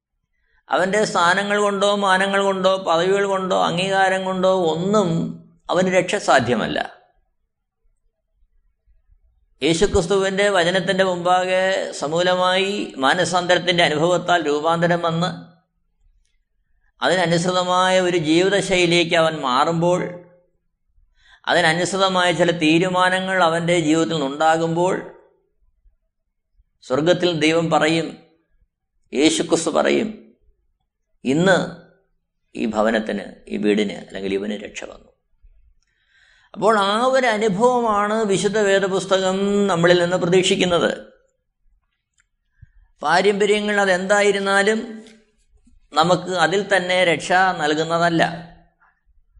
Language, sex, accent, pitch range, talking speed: Malayalam, male, native, 170-200 Hz, 75 wpm